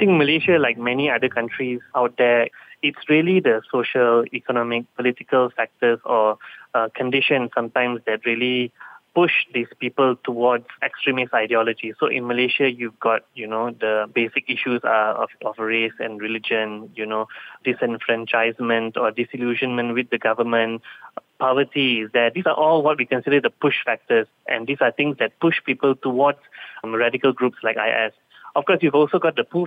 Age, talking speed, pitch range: 20-39, 170 wpm, 115-135 Hz